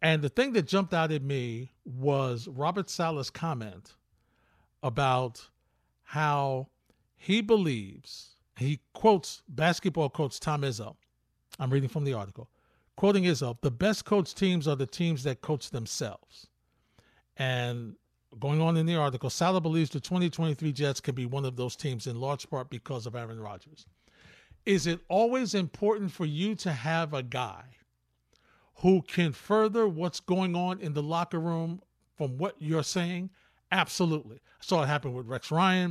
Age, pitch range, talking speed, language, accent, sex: 50-69, 135-180 Hz, 160 wpm, English, American, male